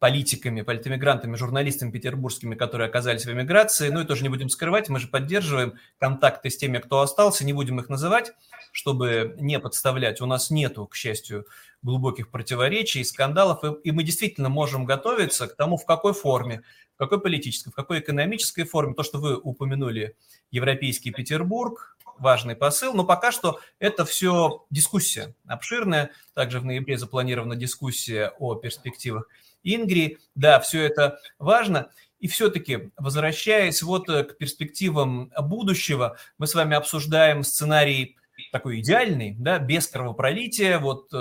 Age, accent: 30-49, native